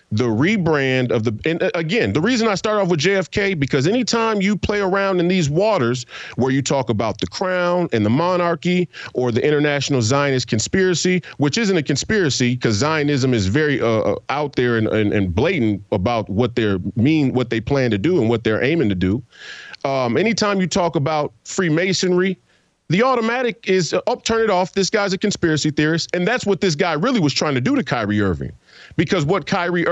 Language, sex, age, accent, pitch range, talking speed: English, male, 40-59, American, 120-185 Hz, 200 wpm